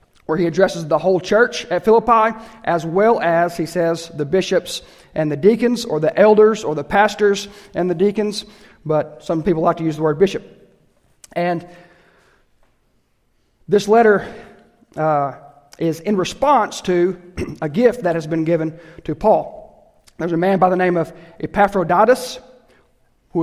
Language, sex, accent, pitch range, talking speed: English, male, American, 165-200 Hz, 155 wpm